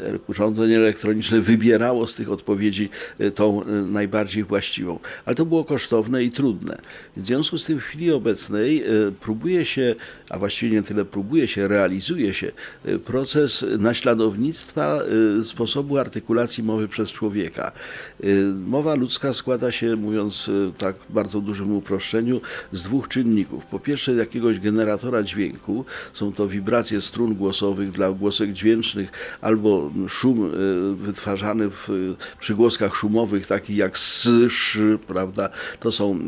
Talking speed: 125 wpm